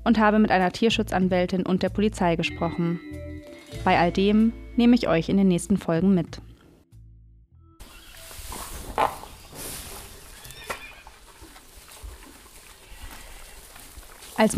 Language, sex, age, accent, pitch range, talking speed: German, female, 20-39, German, 175-210 Hz, 85 wpm